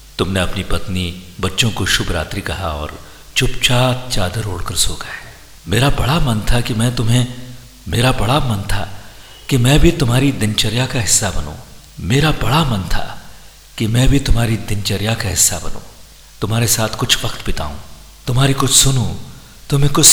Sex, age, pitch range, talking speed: male, 50-69, 90-125 Hz, 105 wpm